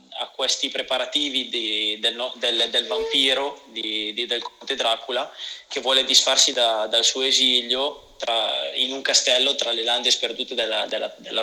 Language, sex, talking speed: Italian, male, 165 wpm